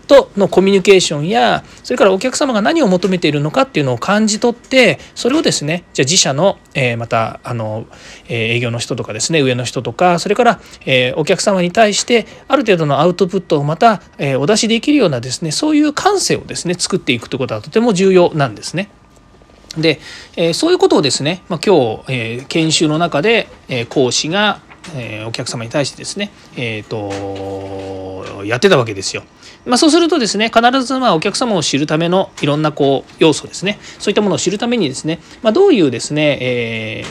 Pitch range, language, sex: 130-210 Hz, Japanese, male